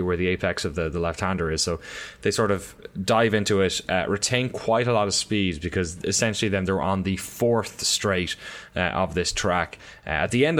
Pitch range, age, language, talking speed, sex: 90-115 Hz, 20-39, English, 215 wpm, male